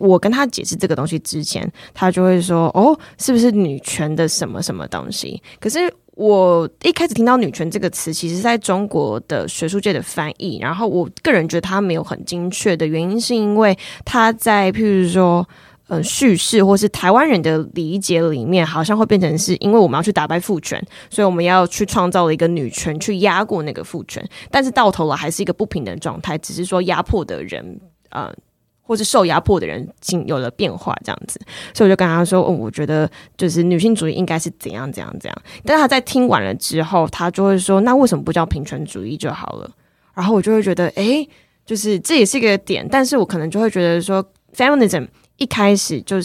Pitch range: 165-210 Hz